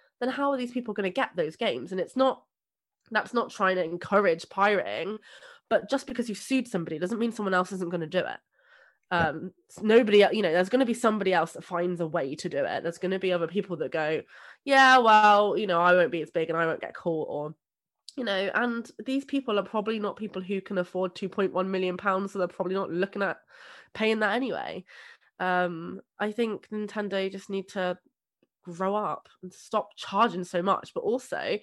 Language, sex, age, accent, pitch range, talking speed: English, female, 20-39, British, 175-230 Hz, 215 wpm